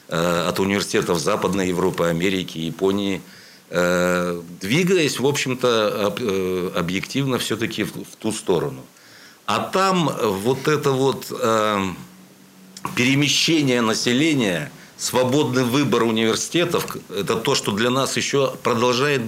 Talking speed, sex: 95 wpm, male